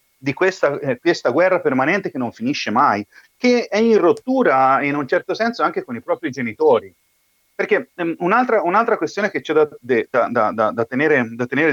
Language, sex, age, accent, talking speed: Italian, male, 40-59, native, 160 wpm